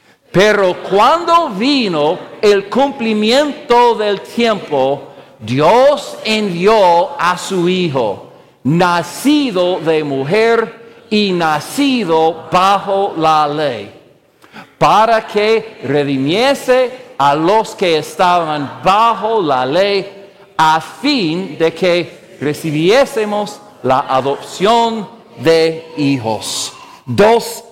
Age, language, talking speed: 50-69, English, 85 wpm